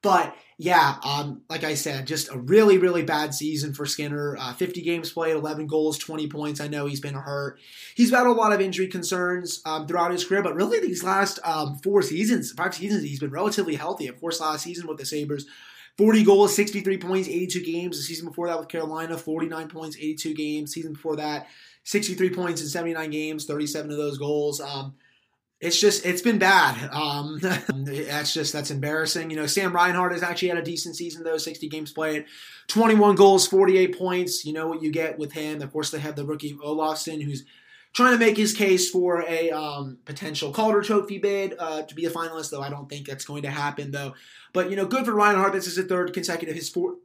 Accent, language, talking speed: American, English, 215 wpm